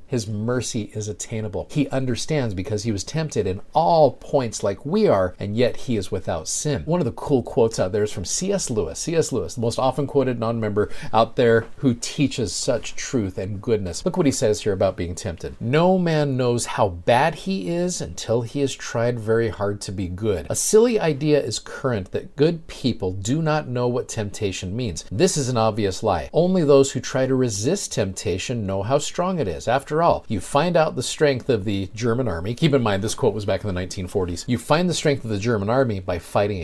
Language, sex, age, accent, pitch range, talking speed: English, male, 50-69, American, 105-145 Hz, 220 wpm